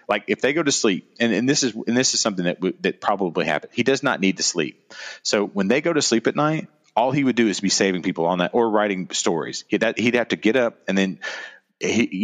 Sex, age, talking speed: male, 30-49, 275 wpm